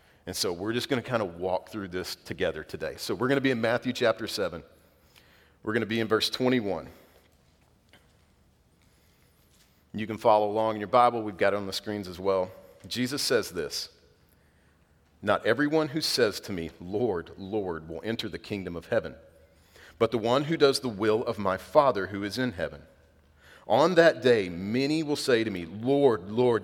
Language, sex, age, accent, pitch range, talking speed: English, male, 40-59, American, 85-125 Hz, 190 wpm